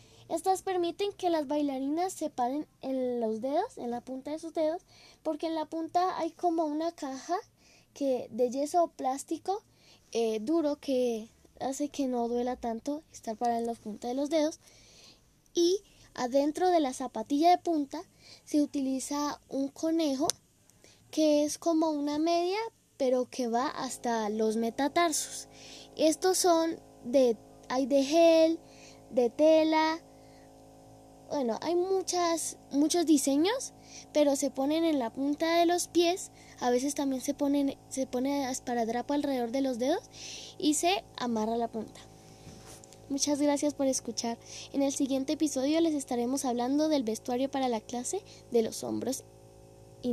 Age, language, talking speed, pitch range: 10-29, Spanish, 150 wpm, 245-325 Hz